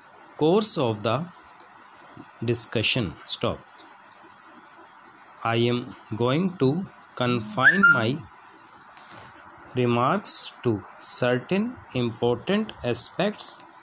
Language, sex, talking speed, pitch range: English, male, 70 wpm, 115-165 Hz